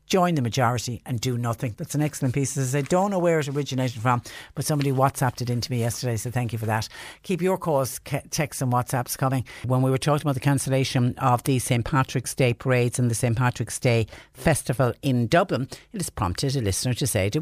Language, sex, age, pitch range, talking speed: English, female, 60-79, 120-155 Hz, 230 wpm